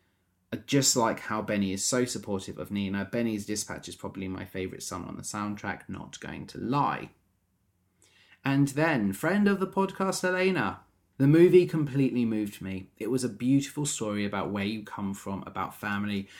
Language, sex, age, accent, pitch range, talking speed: English, male, 30-49, British, 95-115 Hz, 170 wpm